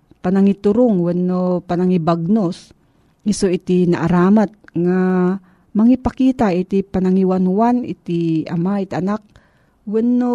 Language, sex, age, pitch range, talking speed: Filipino, female, 40-59, 165-215 Hz, 85 wpm